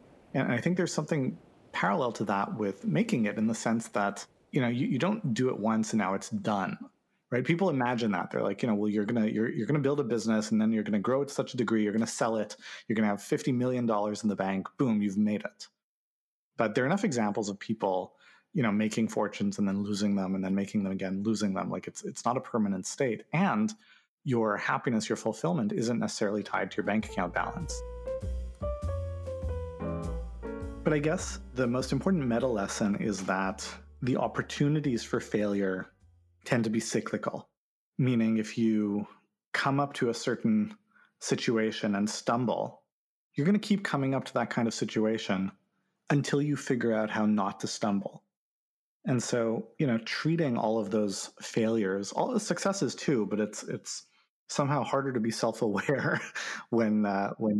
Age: 30-49